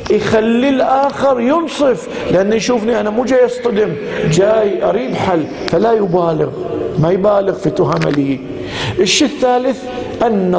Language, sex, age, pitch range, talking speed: Arabic, male, 50-69, 175-230 Hz, 125 wpm